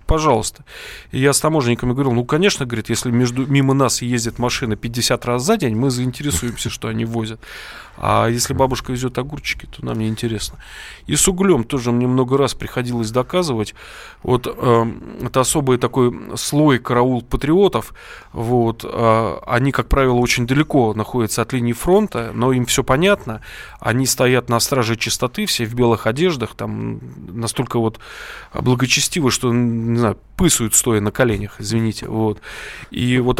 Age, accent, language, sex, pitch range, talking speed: 20-39, native, Russian, male, 115-130 Hz, 155 wpm